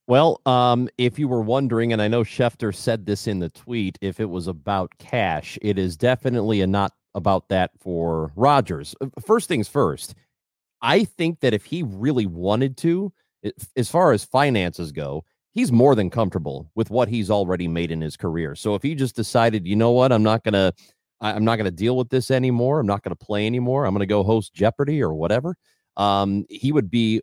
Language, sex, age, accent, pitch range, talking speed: English, male, 30-49, American, 95-130 Hz, 205 wpm